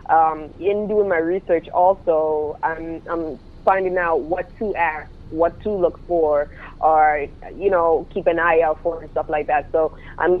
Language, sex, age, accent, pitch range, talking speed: English, female, 20-39, American, 165-195 Hz, 180 wpm